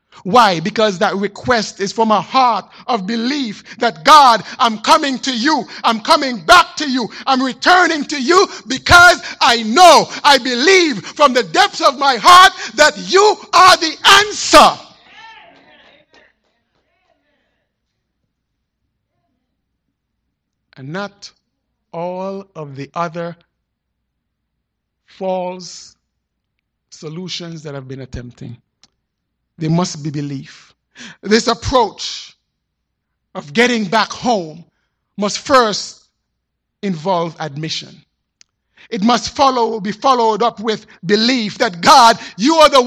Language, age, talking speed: English, 60-79, 110 wpm